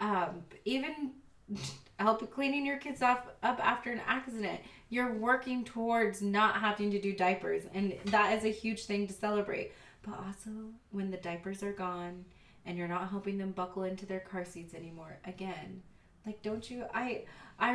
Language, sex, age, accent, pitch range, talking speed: English, female, 20-39, American, 180-205 Hz, 170 wpm